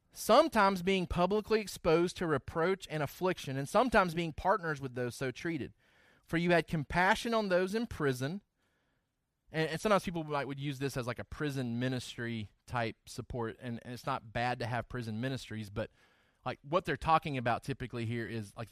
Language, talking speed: English, 185 wpm